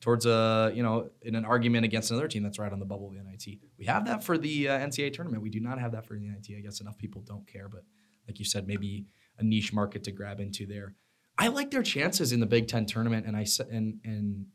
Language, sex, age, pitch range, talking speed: English, male, 20-39, 105-125 Hz, 270 wpm